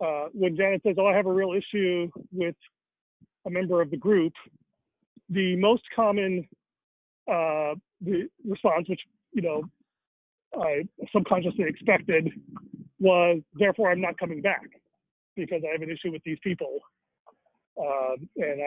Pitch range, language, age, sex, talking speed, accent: 165-210 Hz, English, 40-59, male, 140 wpm, American